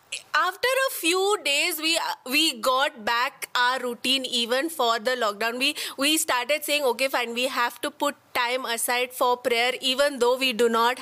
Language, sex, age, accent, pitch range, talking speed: English, female, 20-39, Indian, 255-335 Hz, 180 wpm